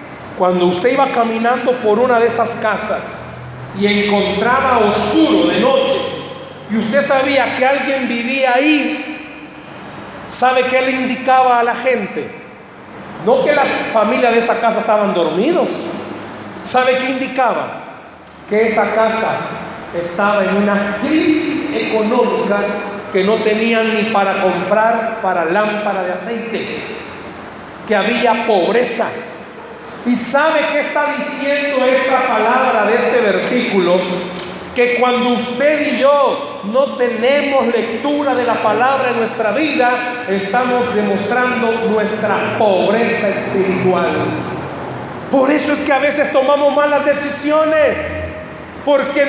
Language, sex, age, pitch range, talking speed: Spanish, male, 40-59, 215-275 Hz, 120 wpm